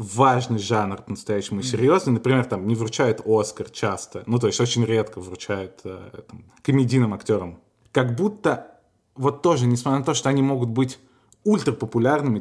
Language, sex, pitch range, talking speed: Russian, male, 110-130 Hz, 155 wpm